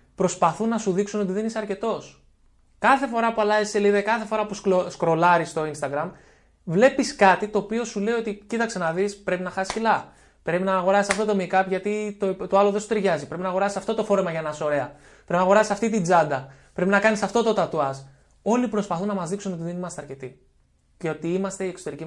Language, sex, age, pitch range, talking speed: Greek, male, 20-39, 155-200 Hz, 225 wpm